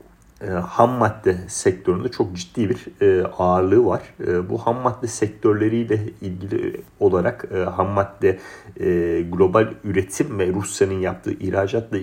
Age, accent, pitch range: 40-59, native, 95-110 Hz